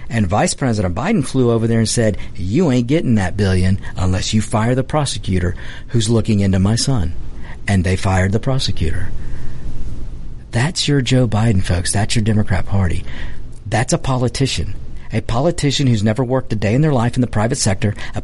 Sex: male